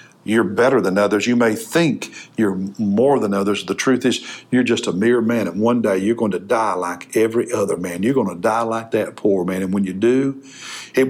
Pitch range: 100-130 Hz